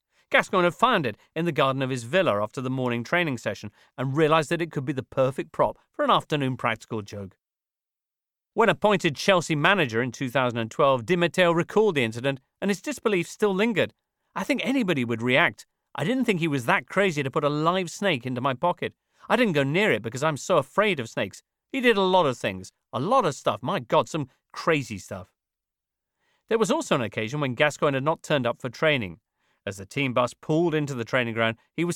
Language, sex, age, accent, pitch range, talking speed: English, male, 40-59, British, 125-180 Hz, 215 wpm